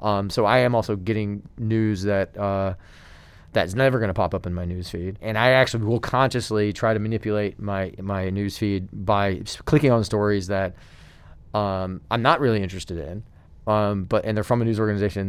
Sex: male